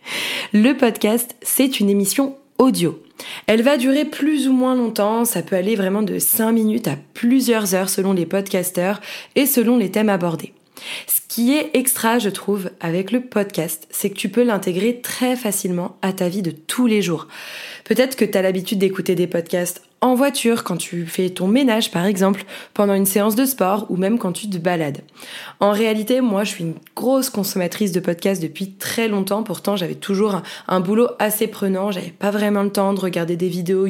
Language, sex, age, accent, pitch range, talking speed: French, female, 20-39, French, 185-225 Hz, 200 wpm